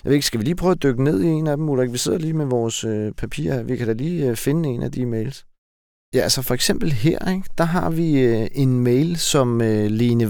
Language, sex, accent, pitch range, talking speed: Danish, male, native, 110-140 Hz, 270 wpm